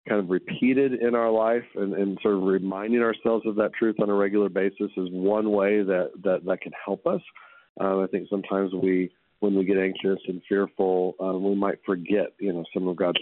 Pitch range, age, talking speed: 95-105 Hz, 40-59, 220 wpm